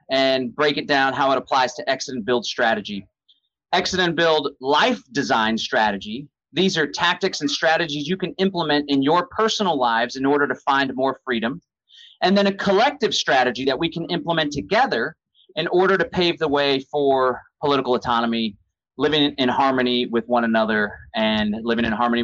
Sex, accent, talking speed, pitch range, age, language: male, American, 175 wpm, 125-190 Hz, 30-49, English